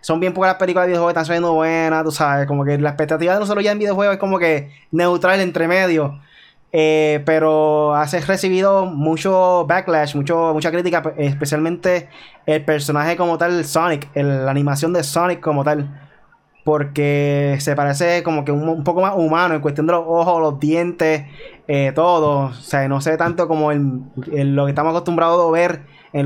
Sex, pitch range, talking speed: male, 150-175 Hz, 190 wpm